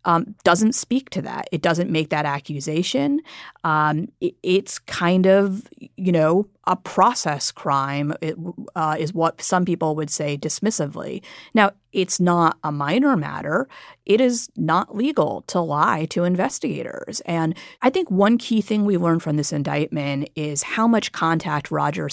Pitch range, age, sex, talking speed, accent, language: 150-190 Hz, 30-49, female, 155 wpm, American, English